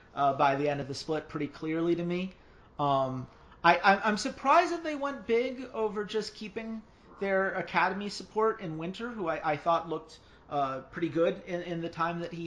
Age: 30-49